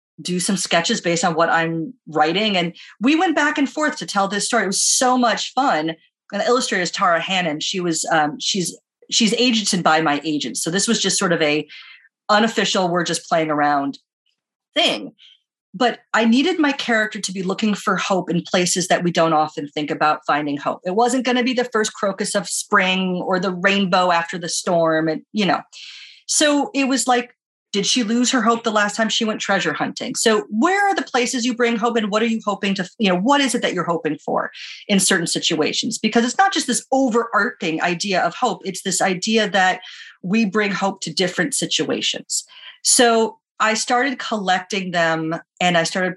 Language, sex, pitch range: English, female, 170-230 Hz